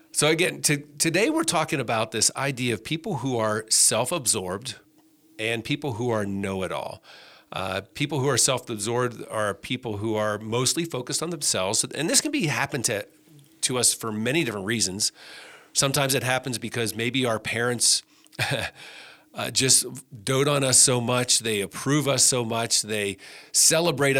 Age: 40-59